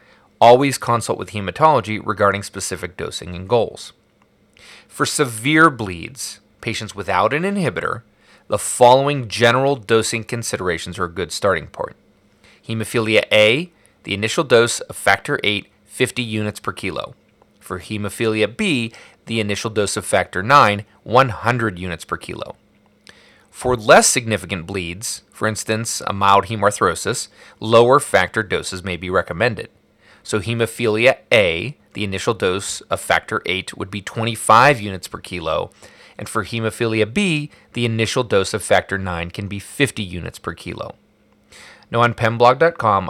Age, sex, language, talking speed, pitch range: 30-49, male, English, 140 wpm, 100-120 Hz